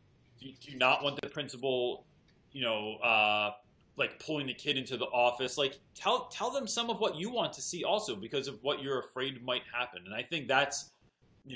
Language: English